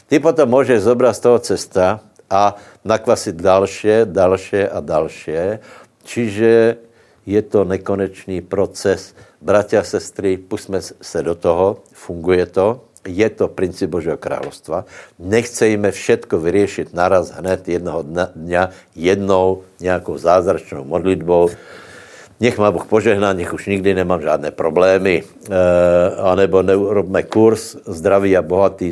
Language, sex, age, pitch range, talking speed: Slovak, male, 60-79, 90-110 Hz, 125 wpm